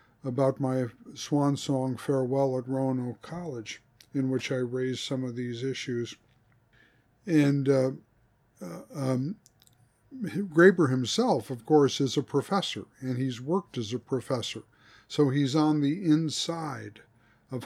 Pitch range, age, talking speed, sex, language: 125-150 Hz, 50-69, 135 wpm, male, English